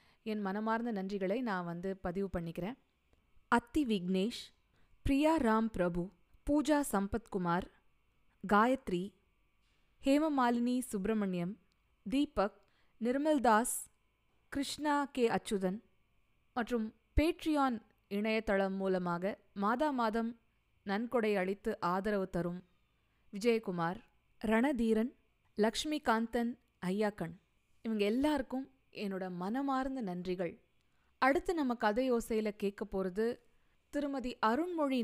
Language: Tamil